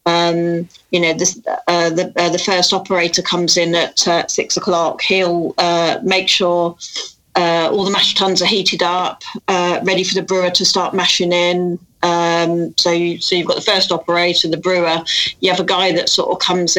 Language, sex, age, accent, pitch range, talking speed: English, female, 40-59, British, 170-190 Hz, 200 wpm